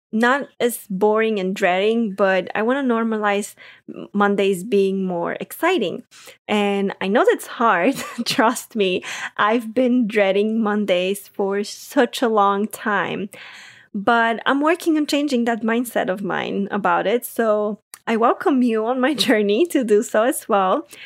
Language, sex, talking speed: English, female, 150 wpm